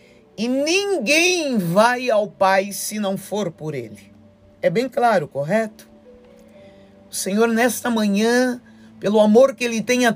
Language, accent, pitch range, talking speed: Portuguese, Brazilian, 180-230 Hz, 140 wpm